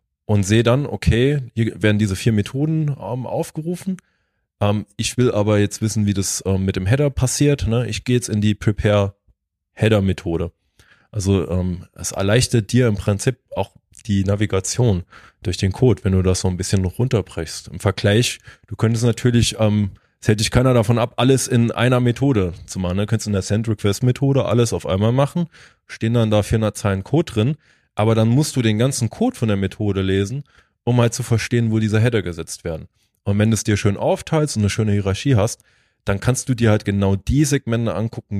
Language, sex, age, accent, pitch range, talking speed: German, male, 20-39, German, 100-120 Hz, 200 wpm